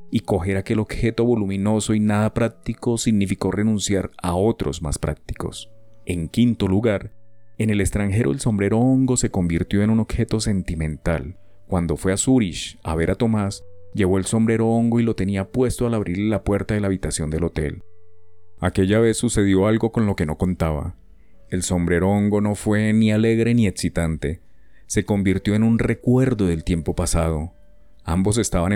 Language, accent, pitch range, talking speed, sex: Spanish, Colombian, 90-110 Hz, 170 wpm, male